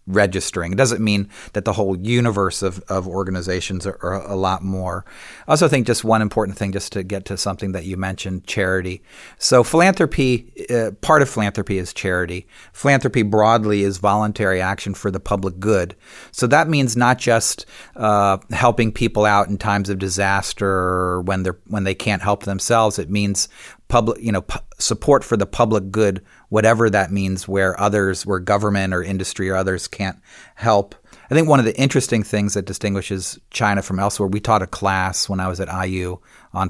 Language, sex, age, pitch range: English, male, 40-59, 95-110 Hz